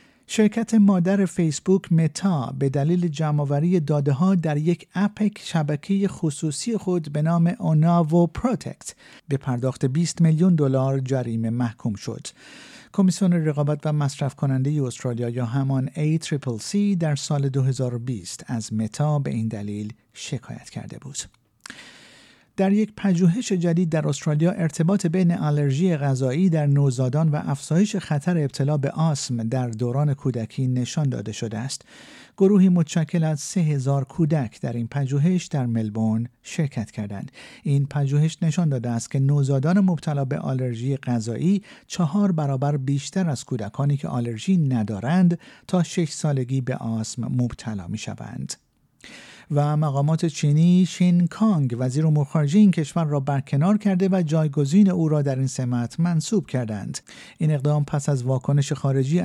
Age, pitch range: 50-69, 130-170 Hz